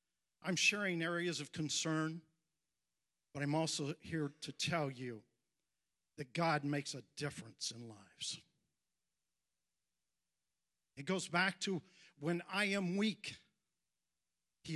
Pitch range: 135-175 Hz